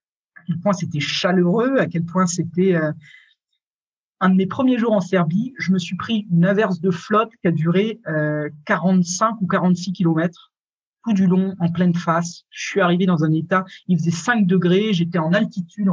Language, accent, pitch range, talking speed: French, French, 170-230 Hz, 190 wpm